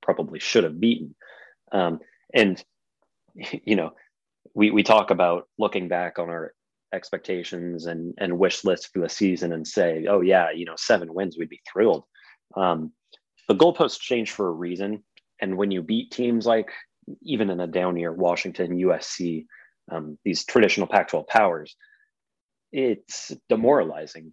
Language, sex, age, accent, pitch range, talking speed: English, male, 30-49, American, 85-105 Hz, 155 wpm